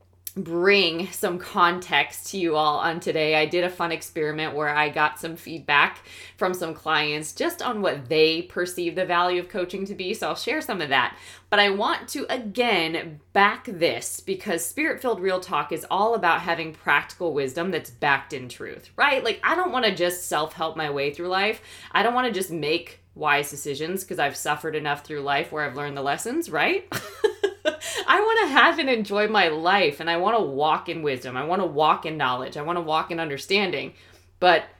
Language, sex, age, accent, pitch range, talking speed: English, female, 20-39, American, 150-200 Hz, 210 wpm